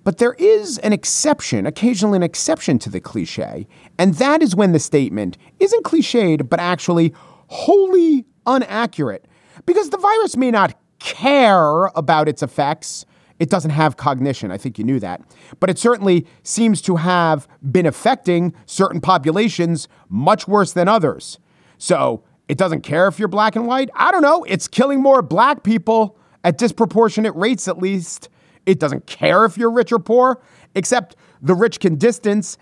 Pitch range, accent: 155-220 Hz, American